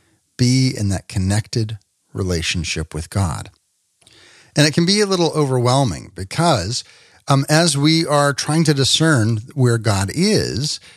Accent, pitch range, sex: American, 115-155 Hz, male